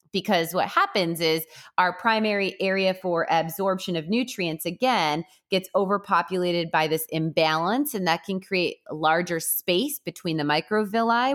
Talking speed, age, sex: 135 wpm, 20-39, female